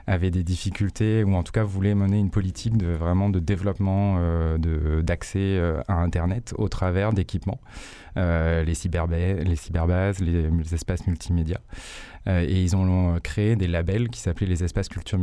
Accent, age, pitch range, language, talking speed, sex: French, 20-39, 85-100 Hz, French, 175 wpm, male